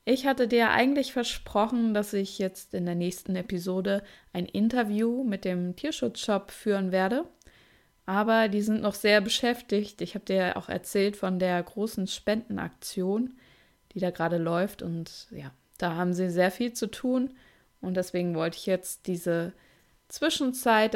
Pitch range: 185-225 Hz